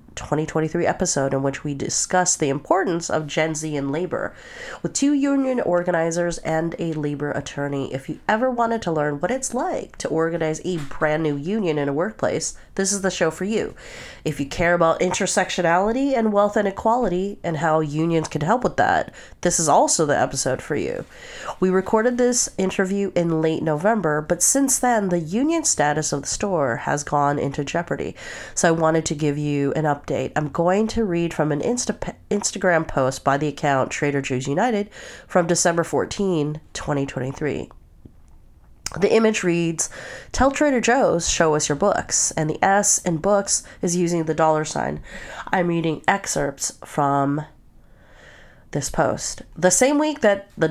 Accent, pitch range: American, 150-200 Hz